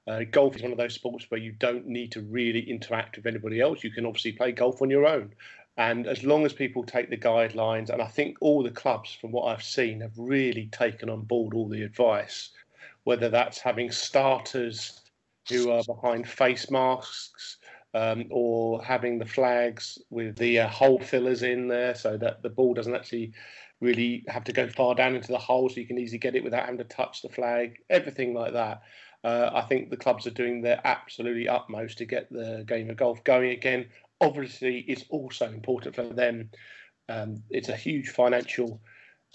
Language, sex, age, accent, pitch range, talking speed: English, male, 40-59, British, 115-130 Hz, 200 wpm